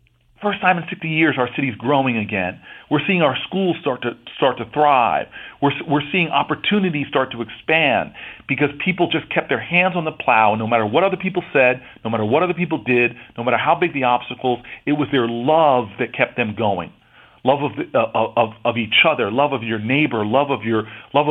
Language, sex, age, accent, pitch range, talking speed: English, male, 40-59, American, 125-180 Hz, 215 wpm